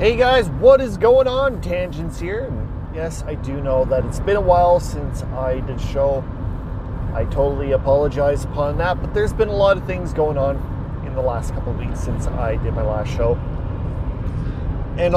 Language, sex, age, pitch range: English, male, 30-49, 110-140 Hz